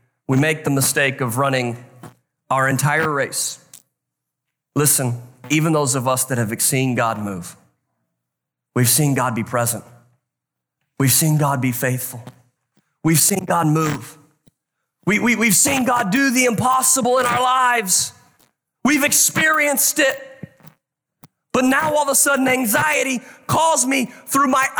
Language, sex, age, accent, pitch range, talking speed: English, male, 30-49, American, 130-180 Hz, 135 wpm